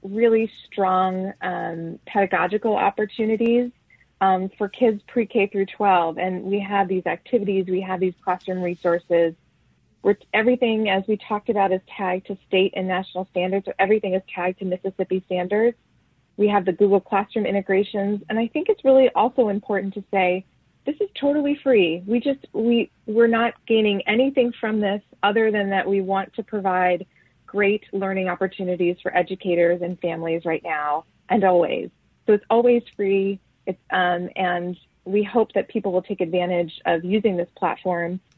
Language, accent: English, American